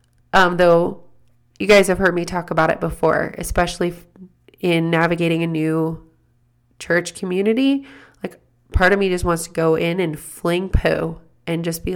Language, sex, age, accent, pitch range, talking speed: English, female, 30-49, American, 160-200 Hz, 165 wpm